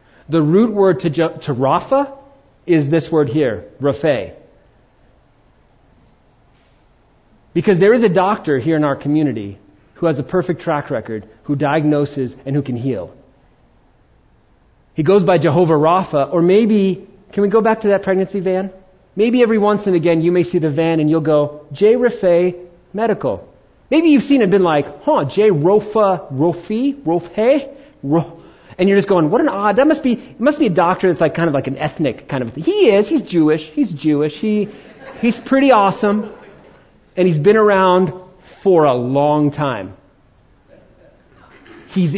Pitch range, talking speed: 145-205 Hz, 170 wpm